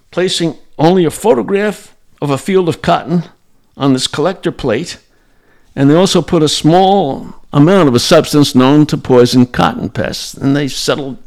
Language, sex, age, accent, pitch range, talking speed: English, male, 60-79, American, 125-165 Hz, 165 wpm